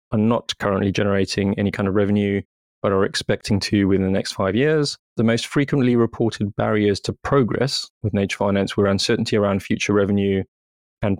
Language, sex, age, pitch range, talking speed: English, male, 20-39, 100-110 Hz, 175 wpm